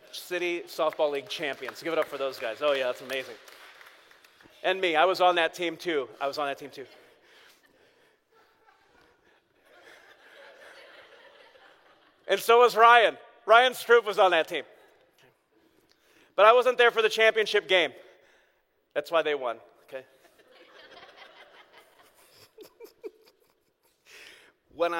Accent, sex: American, male